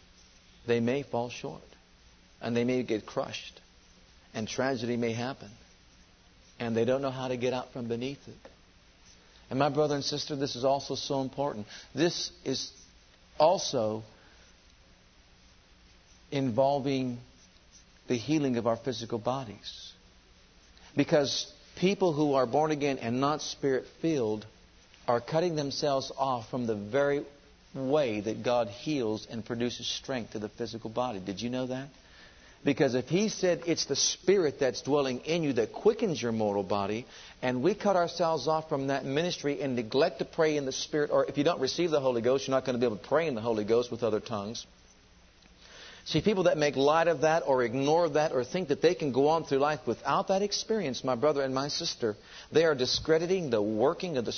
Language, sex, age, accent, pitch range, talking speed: English, male, 50-69, American, 120-155 Hz, 180 wpm